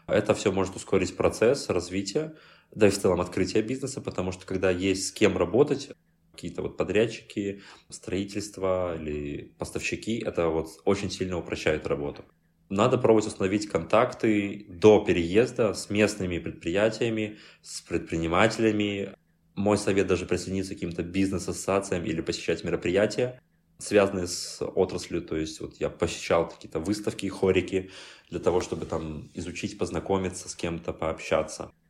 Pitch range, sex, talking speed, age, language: 80-105 Hz, male, 135 wpm, 20-39, Russian